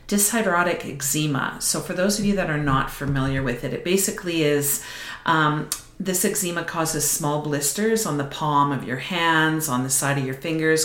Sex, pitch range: female, 145-170 Hz